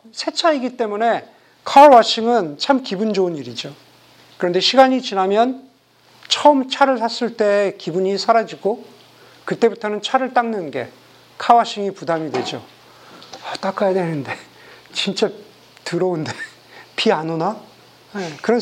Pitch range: 170-240 Hz